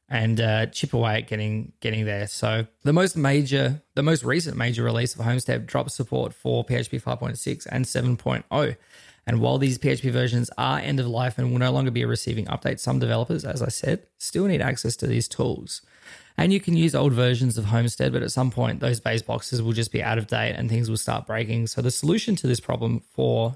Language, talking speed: English, 220 wpm